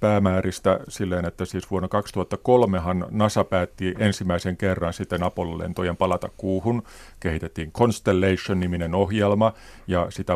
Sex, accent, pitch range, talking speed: male, native, 90-105 Hz, 110 wpm